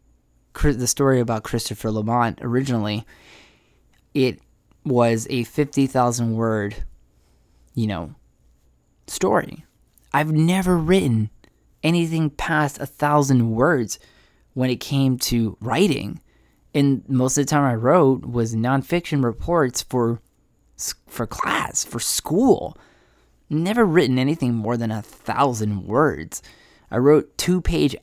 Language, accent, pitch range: English, American, 110-140 Hz